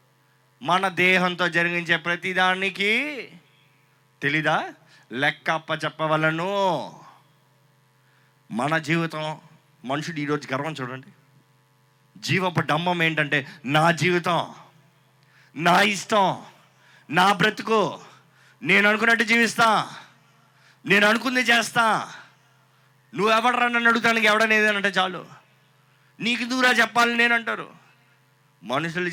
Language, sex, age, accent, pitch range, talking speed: Telugu, male, 30-49, native, 140-220 Hz, 80 wpm